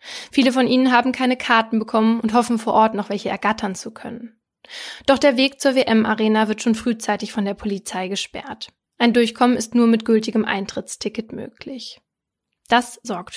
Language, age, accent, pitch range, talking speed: German, 20-39, German, 215-240 Hz, 170 wpm